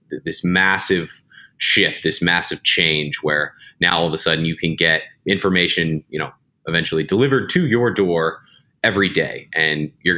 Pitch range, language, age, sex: 80-95 Hz, English, 30-49, male